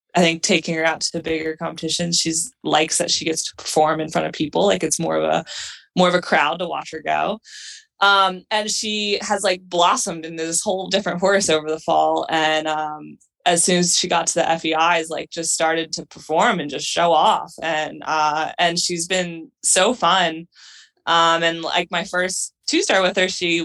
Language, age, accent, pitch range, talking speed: English, 20-39, American, 160-190 Hz, 210 wpm